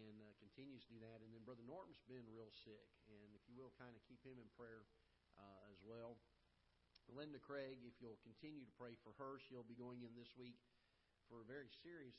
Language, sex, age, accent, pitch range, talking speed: English, male, 40-59, American, 105-120 Hz, 210 wpm